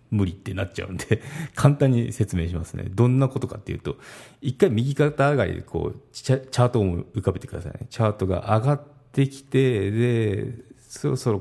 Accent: native